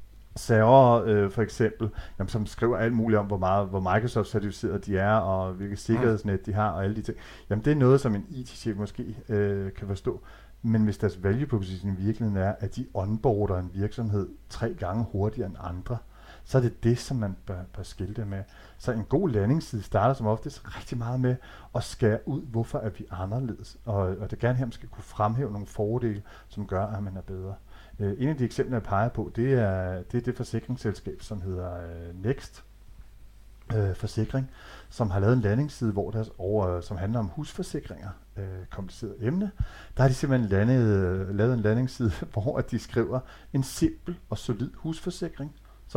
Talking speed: 195 wpm